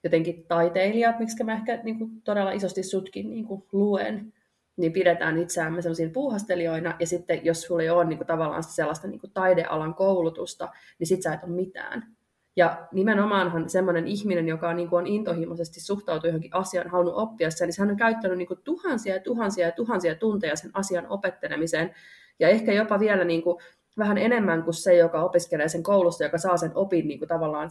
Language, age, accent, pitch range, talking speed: Finnish, 30-49, native, 170-200 Hz, 180 wpm